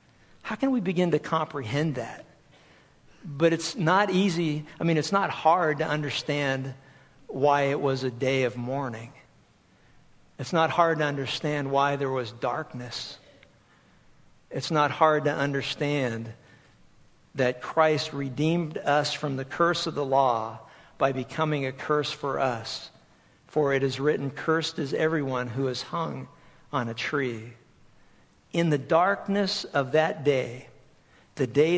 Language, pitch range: English, 130-160 Hz